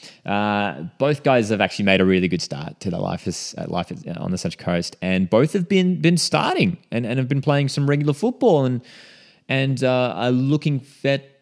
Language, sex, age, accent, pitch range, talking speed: English, male, 30-49, Australian, 90-140 Hz, 220 wpm